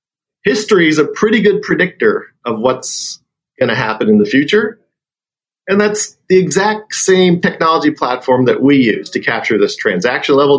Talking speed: 160 wpm